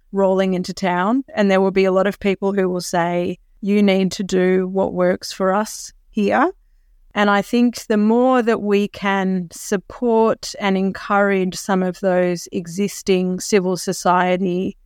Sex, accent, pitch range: female, Australian, 185-205 Hz